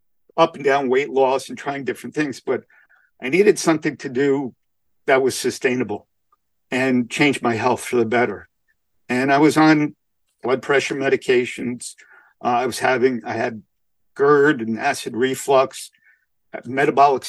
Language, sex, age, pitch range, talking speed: English, male, 50-69, 130-160 Hz, 155 wpm